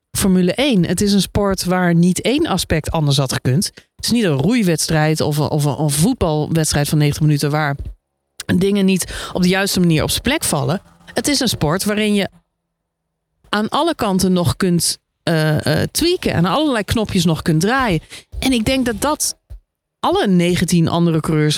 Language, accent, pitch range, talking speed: Dutch, Dutch, 155-205 Hz, 180 wpm